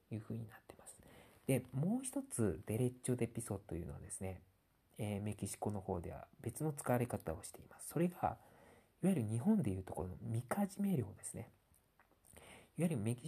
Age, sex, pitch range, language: 40-59, male, 95-125 Hz, Japanese